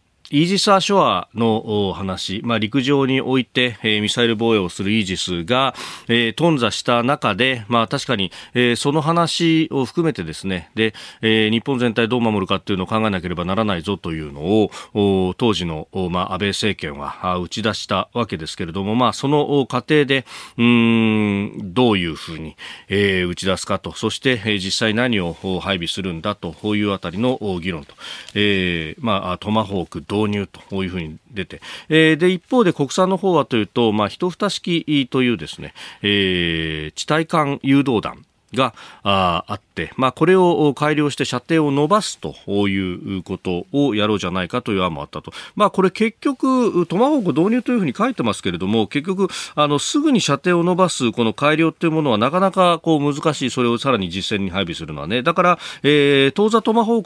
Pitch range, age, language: 100-150 Hz, 40-59, Japanese